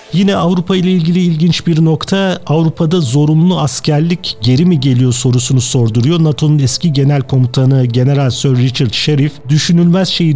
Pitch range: 125-155 Hz